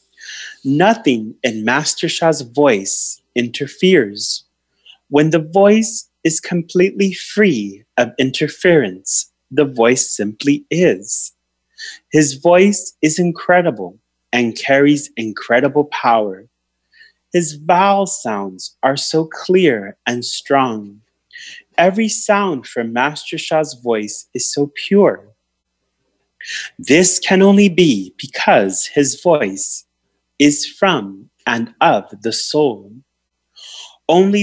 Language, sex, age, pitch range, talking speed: English, male, 30-49, 115-180 Hz, 100 wpm